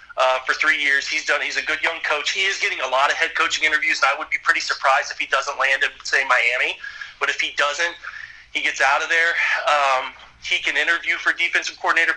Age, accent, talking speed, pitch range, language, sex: 30-49, American, 240 wpm, 135-165 Hz, English, male